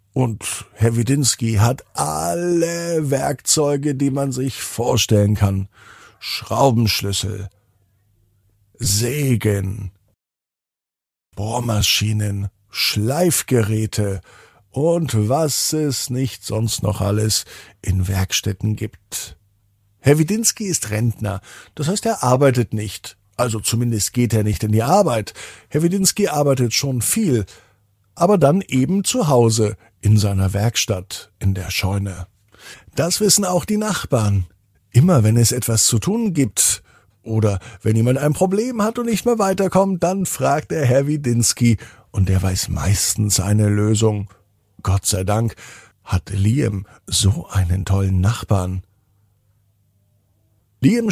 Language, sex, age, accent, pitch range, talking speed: German, male, 50-69, German, 100-140 Hz, 120 wpm